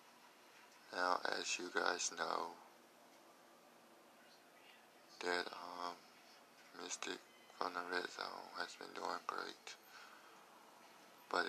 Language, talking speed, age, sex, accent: English, 90 wpm, 20-39, male, American